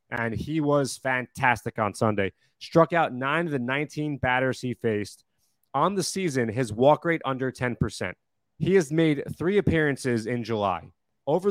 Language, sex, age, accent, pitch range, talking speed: English, male, 30-49, American, 115-150 Hz, 160 wpm